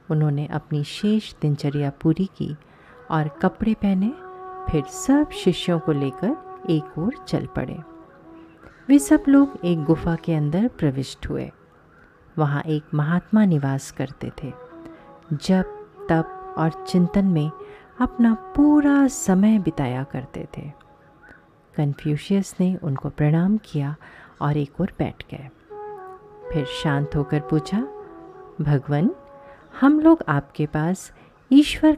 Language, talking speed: Hindi, 120 wpm